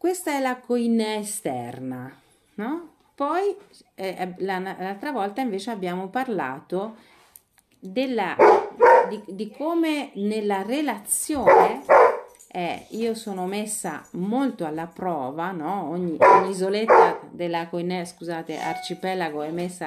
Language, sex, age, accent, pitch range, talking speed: Italian, female, 40-59, native, 160-245 Hz, 110 wpm